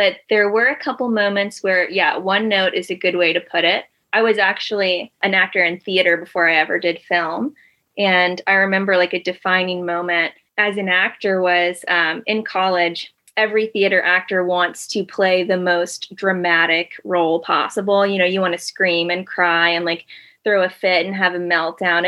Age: 20-39